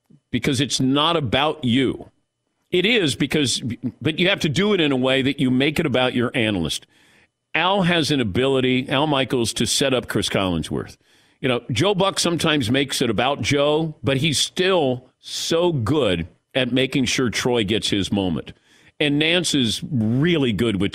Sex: male